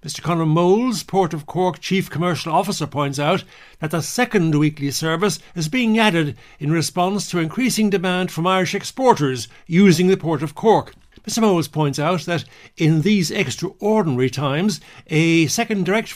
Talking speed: 165 wpm